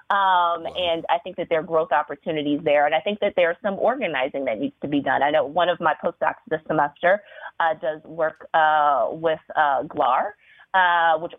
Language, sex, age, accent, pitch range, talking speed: English, female, 20-39, American, 155-200 Hz, 210 wpm